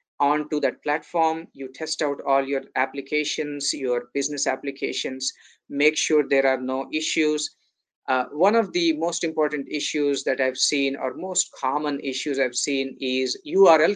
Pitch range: 135-160 Hz